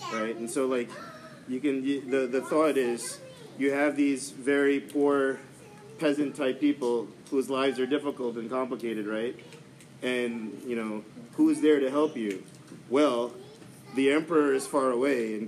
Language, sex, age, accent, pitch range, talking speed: English, male, 40-59, American, 130-160 Hz, 165 wpm